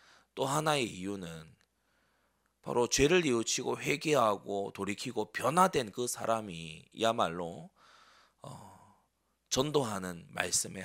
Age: 30-49